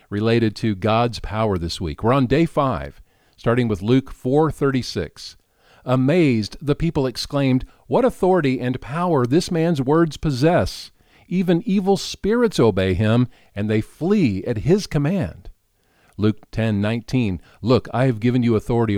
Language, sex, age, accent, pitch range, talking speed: English, male, 50-69, American, 100-140 Hz, 140 wpm